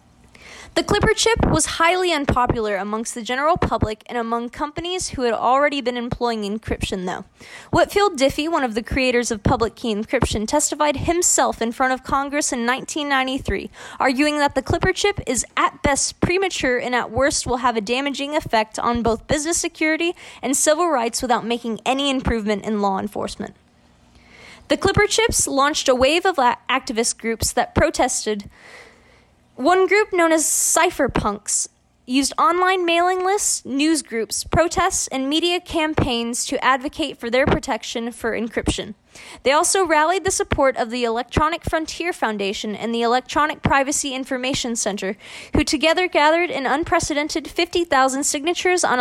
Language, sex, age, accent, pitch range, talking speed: English, female, 20-39, American, 240-320 Hz, 155 wpm